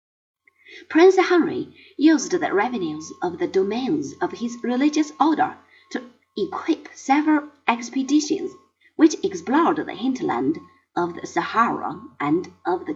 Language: Chinese